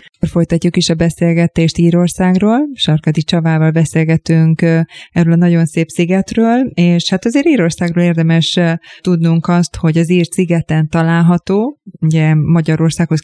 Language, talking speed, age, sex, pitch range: Hungarian, 120 wpm, 20-39, female, 160-180 Hz